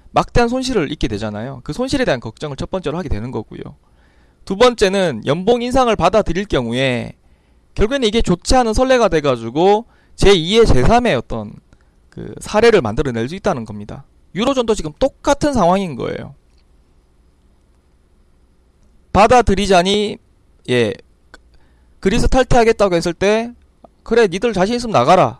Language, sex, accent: Korean, male, native